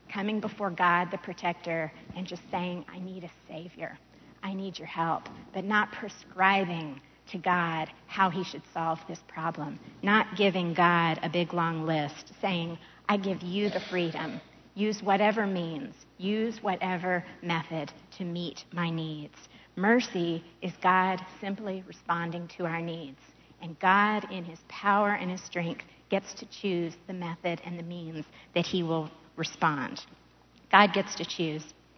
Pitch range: 165-195 Hz